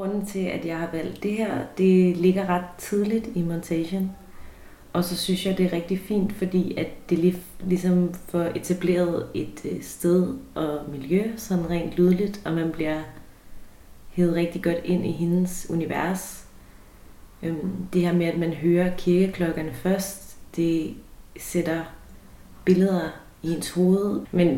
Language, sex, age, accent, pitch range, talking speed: Danish, female, 30-49, native, 165-185 Hz, 150 wpm